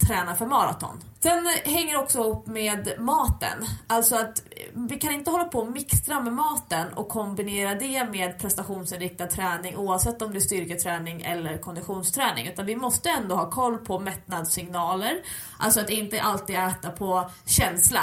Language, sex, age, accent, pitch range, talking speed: English, female, 20-39, Swedish, 180-235 Hz, 160 wpm